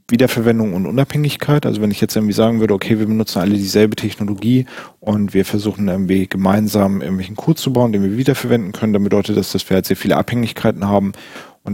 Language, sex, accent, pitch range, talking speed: German, male, German, 100-115 Hz, 205 wpm